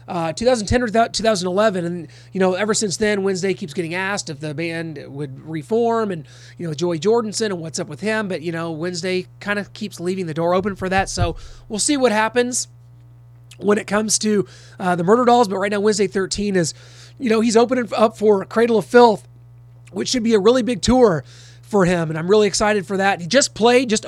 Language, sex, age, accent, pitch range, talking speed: English, male, 30-49, American, 160-215 Hz, 220 wpm